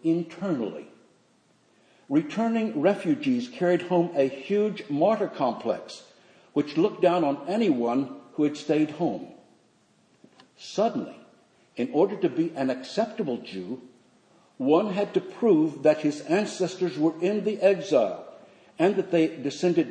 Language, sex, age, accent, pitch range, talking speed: English, male, 60-79, American, 140-200 Hz, 125 wpm